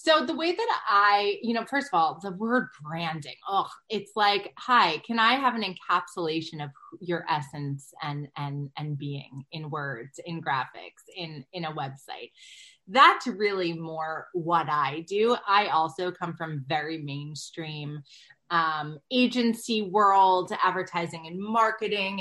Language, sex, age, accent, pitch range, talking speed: English, female, 30-49, American, 160-225 Hz, 150 wpm